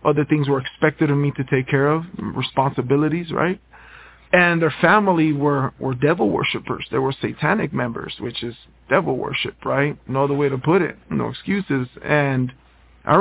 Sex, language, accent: male, English, American